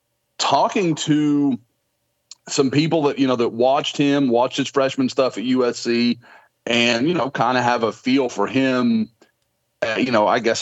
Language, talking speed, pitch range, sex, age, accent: English, 170 wpm, 115-145 Hz, male, 40-59, American